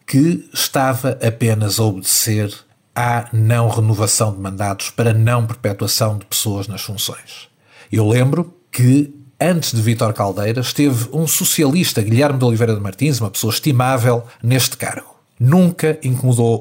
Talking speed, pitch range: 140 wpm, 110-130 Hz